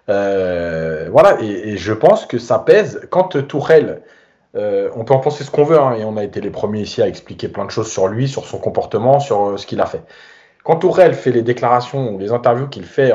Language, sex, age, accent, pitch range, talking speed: French, male, 30-49, French, 120-155 Hz, 245 wpm